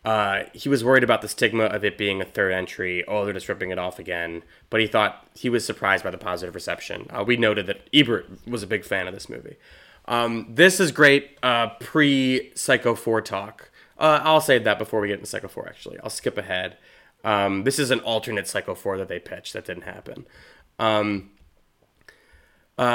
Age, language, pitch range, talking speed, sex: 20-39, English, 100-130 Hz, 210 wpm, male